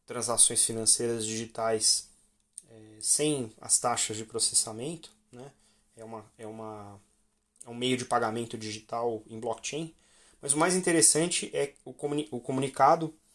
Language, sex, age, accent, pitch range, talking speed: Portuguese, male, 20-39, Brazilian, 110-140 Hz, 140 wpm